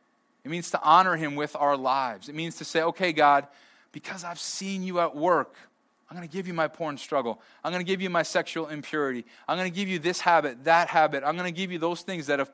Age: 20-39